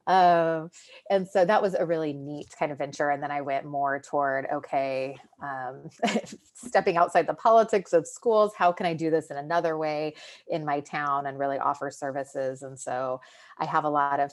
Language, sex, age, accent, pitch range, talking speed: English, female, 30-49, American, 140-175 Hz, 195 wpm